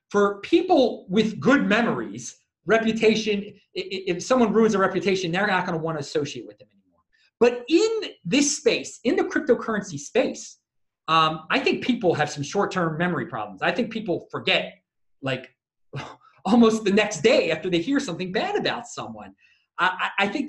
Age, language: 30-49, English